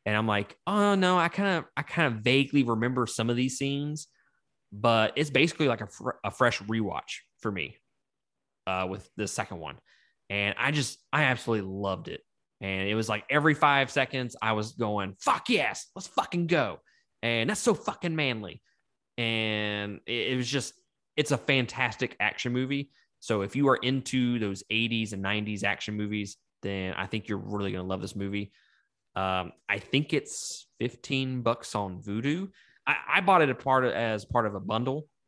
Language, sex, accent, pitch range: English, male, American, 105-140 Hz